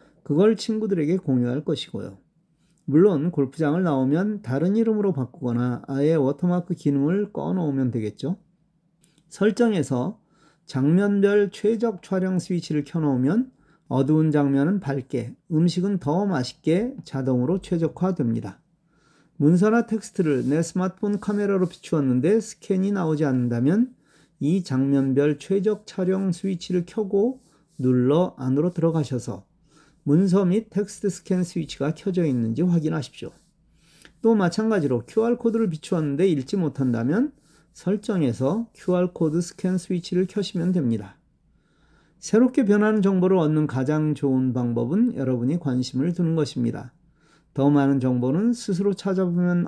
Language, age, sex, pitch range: Korean, 40-59, male, 140-190 Hz